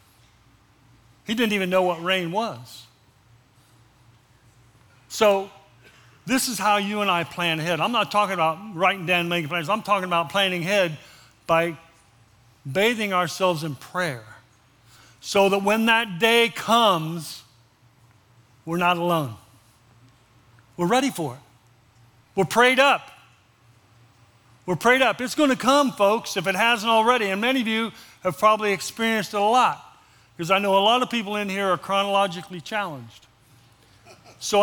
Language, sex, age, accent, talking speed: English, male, 50-69, American, 145 wpm